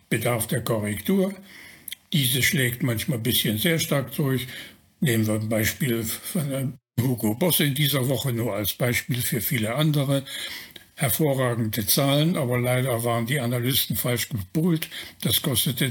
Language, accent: German, German